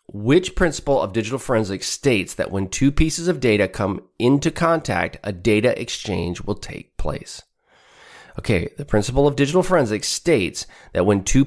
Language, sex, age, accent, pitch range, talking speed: English, male, 30-49, American, 95-125 Hz, 160 wpm